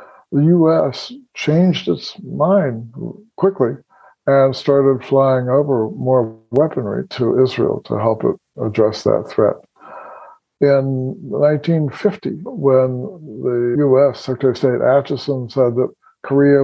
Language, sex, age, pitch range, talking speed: English, male, 60-79, 120-145 Hz, 115 wpm